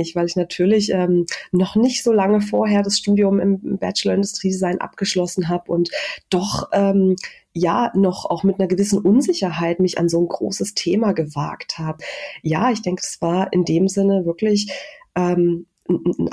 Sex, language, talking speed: female, German, 160 wpm